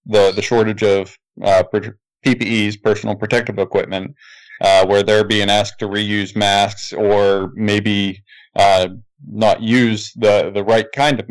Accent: American